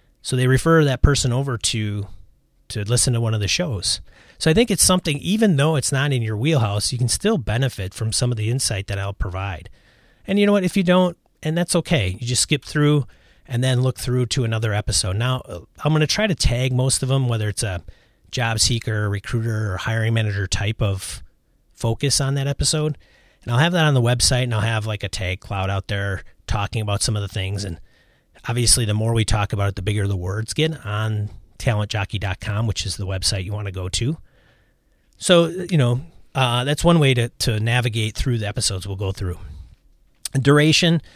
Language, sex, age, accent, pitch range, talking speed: English, male, 30-49, American, 100-140 Hz, 215 wpm